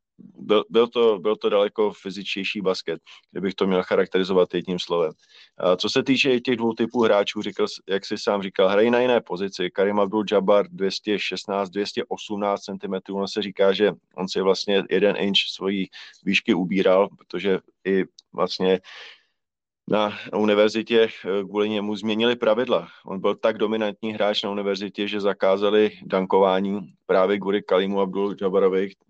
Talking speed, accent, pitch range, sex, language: 145 wpm, native, 95-105 Hz, male, Czech